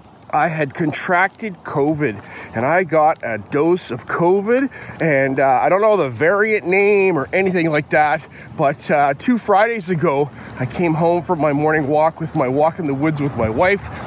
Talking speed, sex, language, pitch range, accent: 190 wpm, male, English, 140-200 Hz, American